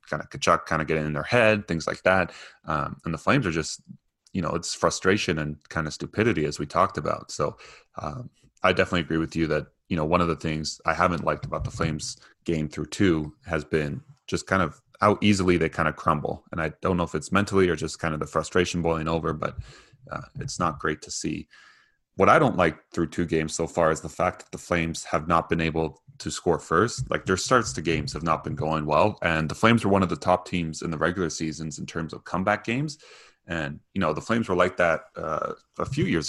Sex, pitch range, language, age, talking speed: male, 80-90 Hz, English, 30-49, 245 wpm